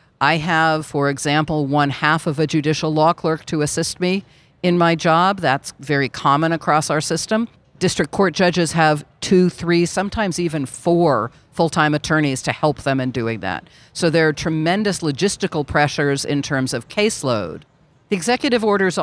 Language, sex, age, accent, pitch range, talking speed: English, female, 50-69, American, 145-175 Hz, 165 wpm